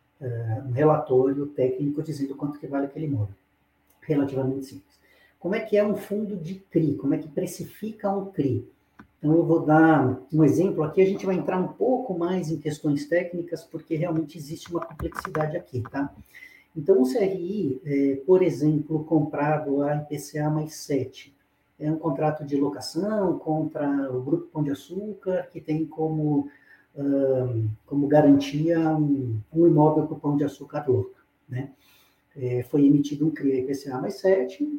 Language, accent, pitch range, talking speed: Portuguese, Brazilian, 135-170 Hz, 160 wpm